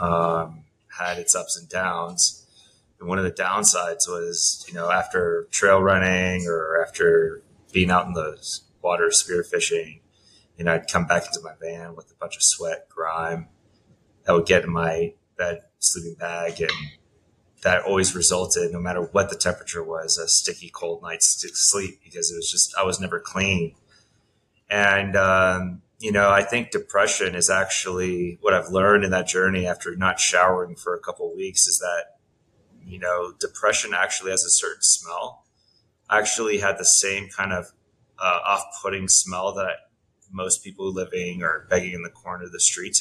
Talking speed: 180 wpm